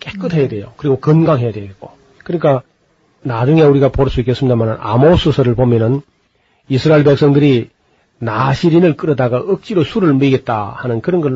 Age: 40-59